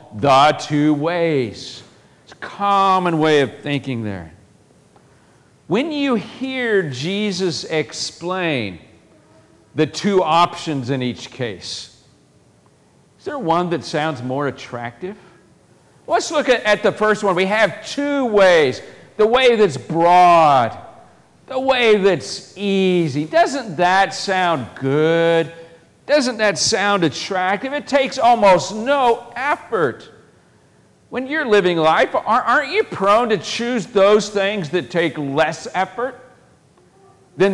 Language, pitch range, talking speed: English, 155-215 Hz, 120 wpm